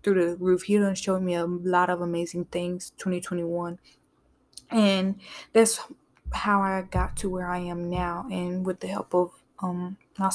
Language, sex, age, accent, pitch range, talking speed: English, female, 10-29, American, 180-205 Hz, 175 wpm